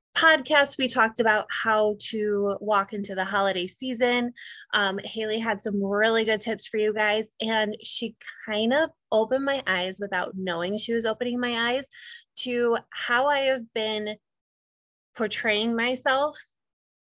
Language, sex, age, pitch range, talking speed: English, female, 20-39, 190-240 Hz, 145 wpm